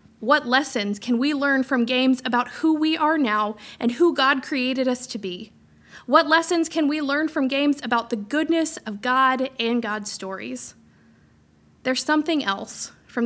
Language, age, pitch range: English, 20-39, 215-275 Hz